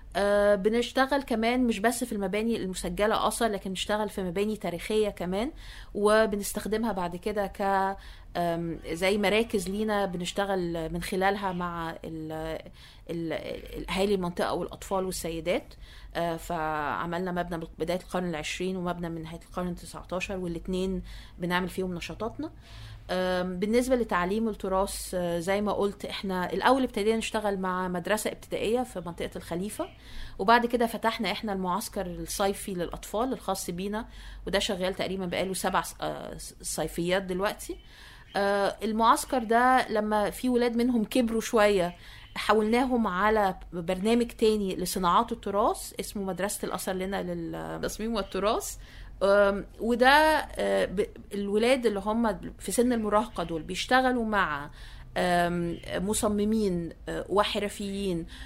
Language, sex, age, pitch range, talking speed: Arabic, female, 20-39, 180-220 Hz, 110 wpm